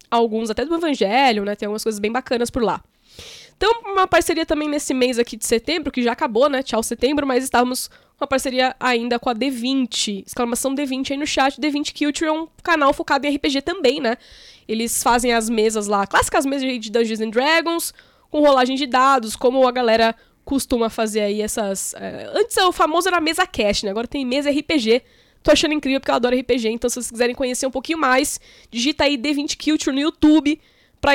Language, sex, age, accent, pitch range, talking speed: Portuguese, female, 10-29, Brazilian, 230-295 Hz, 210 wpm